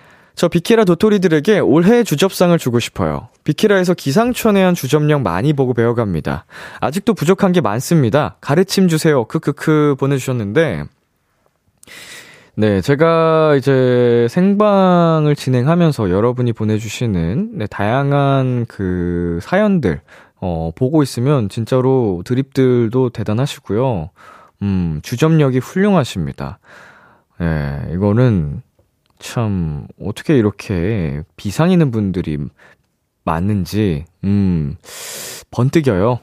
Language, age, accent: Korean, 20-39, native